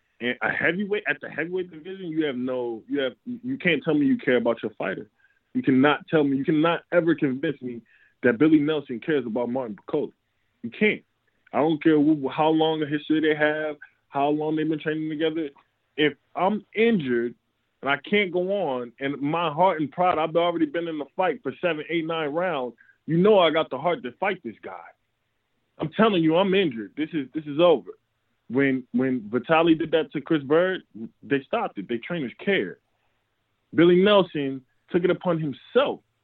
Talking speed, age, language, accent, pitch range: 200 wpm, 20-39, English, American, 135-180 Hz